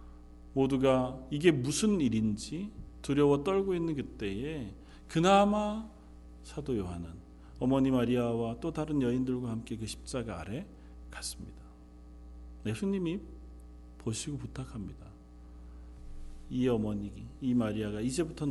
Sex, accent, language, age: male, native, Korean, 40-59